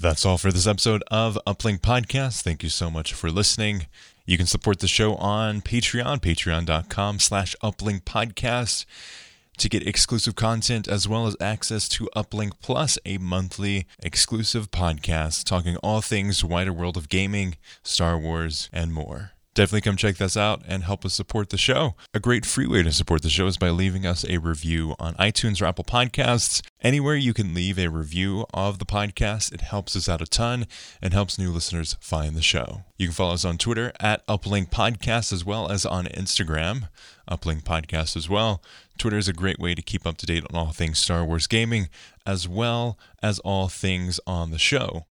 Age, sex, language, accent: 20-39, male, English, American